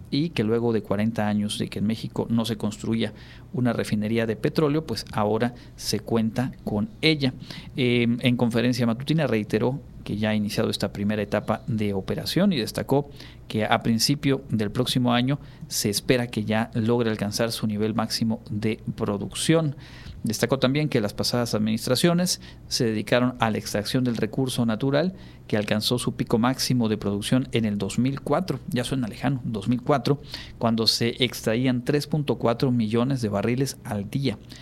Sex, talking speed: male, 160 wpm